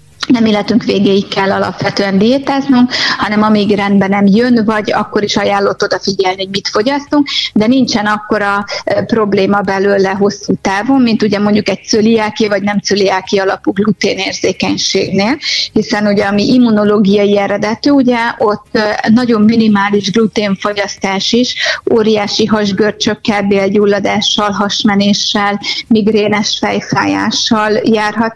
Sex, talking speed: female, 115 wpm